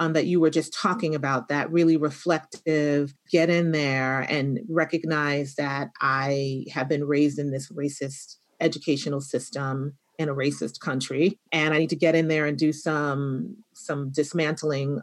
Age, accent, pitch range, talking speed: 40-59, American, 150-185 Hz, 165 wpm